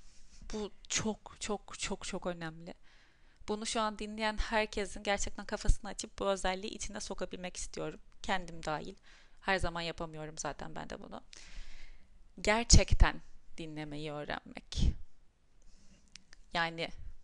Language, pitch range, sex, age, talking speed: Turkish, 175-215 Hz, female, 30-49, 110 wpm